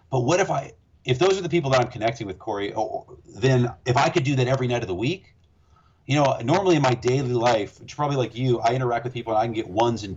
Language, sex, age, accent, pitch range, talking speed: English, male, 40-59, American, 115-140 Hz, 270 wpm